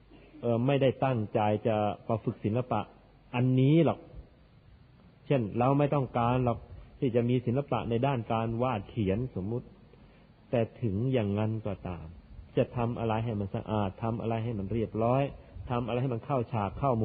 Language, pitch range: Thai, 105-125 Hz